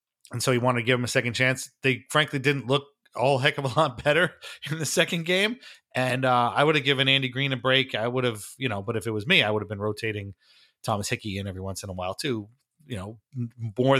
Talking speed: 260 wpm